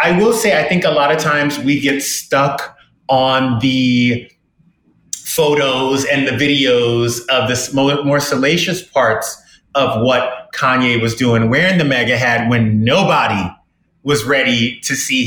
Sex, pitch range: male, 125-180 Hz